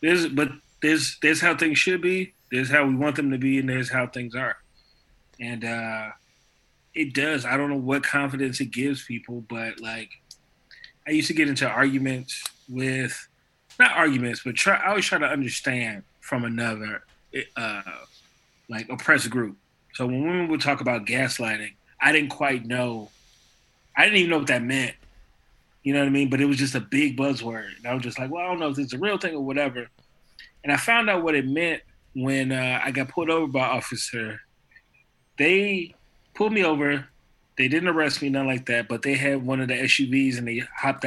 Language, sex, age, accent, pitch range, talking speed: English, male, 20-39, American, 120-145 Hz, 205 wpm